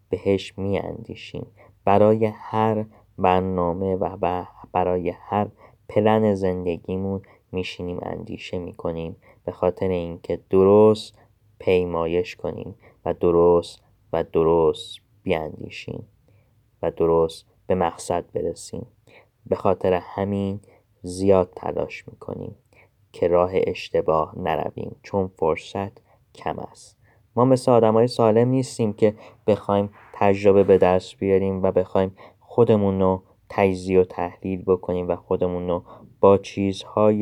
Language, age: Persian, 20-39